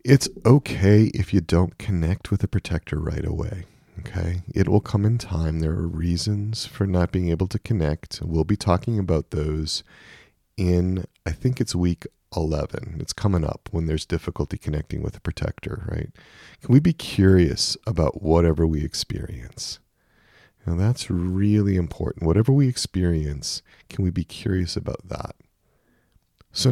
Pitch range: 80-105 Hz